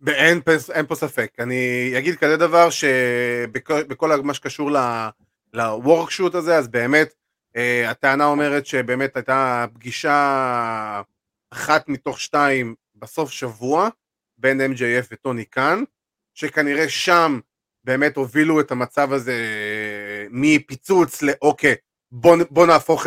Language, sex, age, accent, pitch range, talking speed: Hebrew, male, 30-49, native, 125-155 Hz, 110 wpm